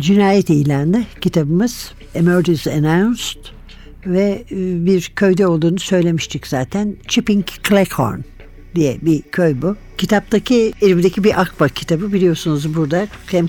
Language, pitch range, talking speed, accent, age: Turkish, 155-205 Hz, 110 wpm, native, 60-79